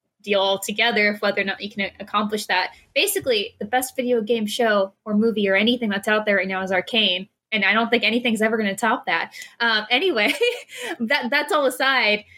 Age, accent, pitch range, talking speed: 20-39, American, 205-245 Hz, 205 wpm